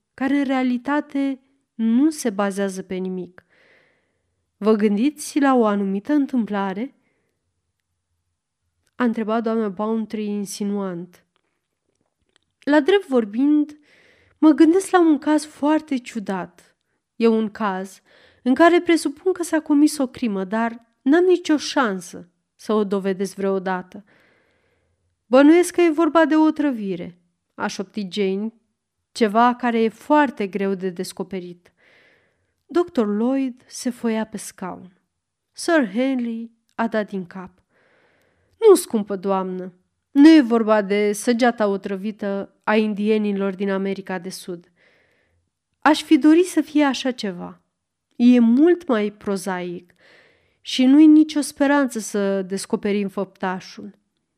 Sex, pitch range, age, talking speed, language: female, 195-285 Hz, 30-49, 120 wpm, Romanian